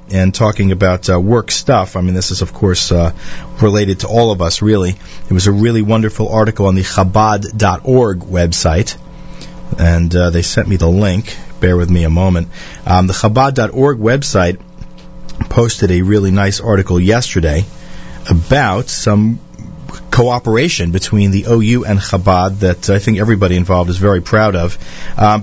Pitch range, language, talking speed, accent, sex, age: 90-110 Hz, English, 165 wpm, American, male, 40-59